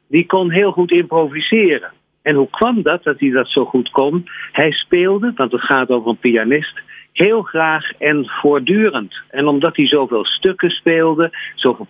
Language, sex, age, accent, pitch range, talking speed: Dutch, male, 50-69, Dutch, 130-175 Hz, 170 wpm